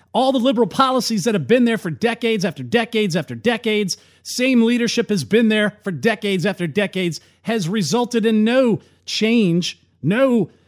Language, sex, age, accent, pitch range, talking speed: English, male, 40-59, American, 145-225 Hz, 165 wpm